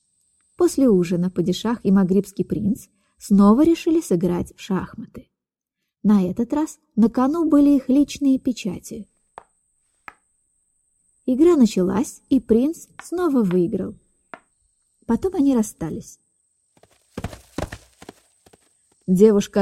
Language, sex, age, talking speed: Russian, female, 20-39, 90 wpm